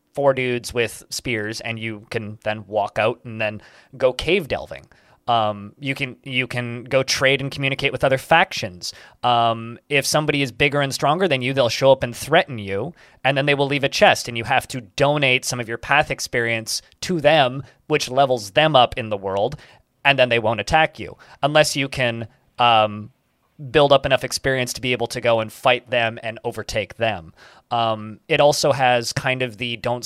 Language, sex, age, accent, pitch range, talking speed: English, male, 20-39, American, 115-140 Hz, 200 wpm